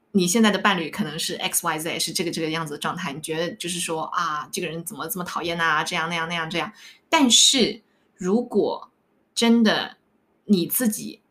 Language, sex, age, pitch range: Chinese, female, 20-39, 165-215 Hz